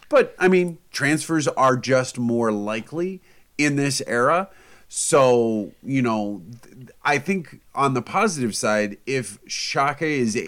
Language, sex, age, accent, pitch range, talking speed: English, male, 30-49, American, 105-130 Hz, 130 wpm